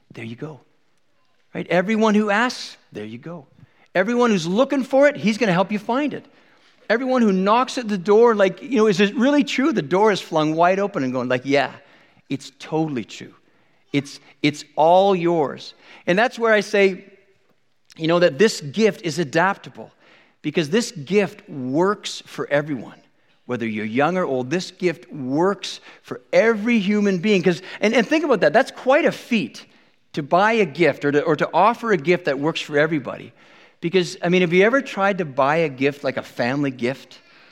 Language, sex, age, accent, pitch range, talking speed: English, male, 50-69, American, 145-210 Hz, 190 wpm